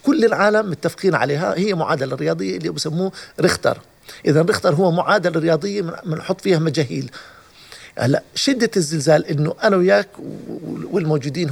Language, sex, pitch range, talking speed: Arabic, male, 155-190 Hz, 130 wpm